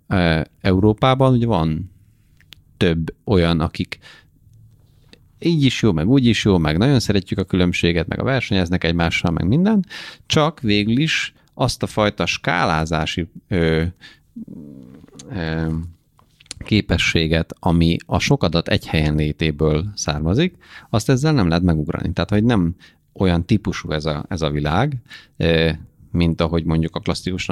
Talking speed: 135 wpm